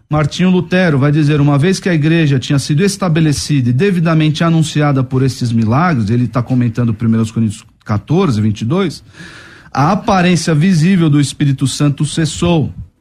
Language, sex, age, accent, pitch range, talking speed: Portuguese, male, 40-59, Brazilian, 130-165 Hz, 150 wpm